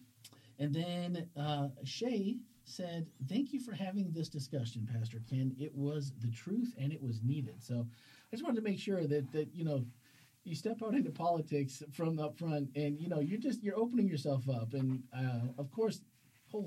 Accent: American